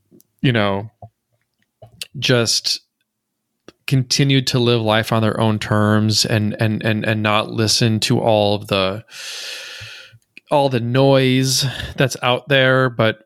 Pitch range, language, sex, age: 110-125 Hz, English, male, 20-39